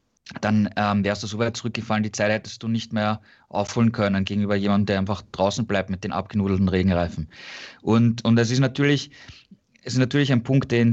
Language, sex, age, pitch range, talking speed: German, male, 20-39, 110-130 Hz, 200 wpm